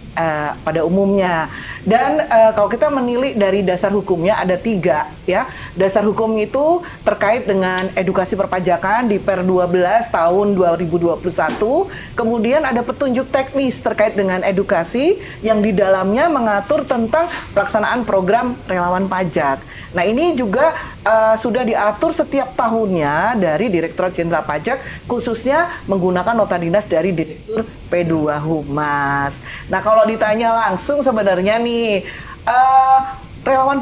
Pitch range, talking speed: 180-240 Hz, 120 wpm